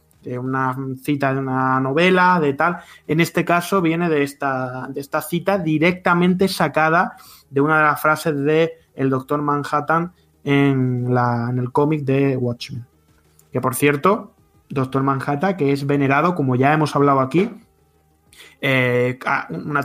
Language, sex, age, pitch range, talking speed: Spanish, male, 20-39, 135-175 Hz, 150 wpm